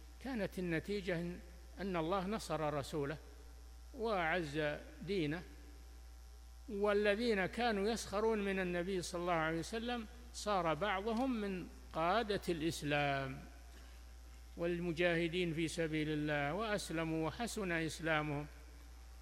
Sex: male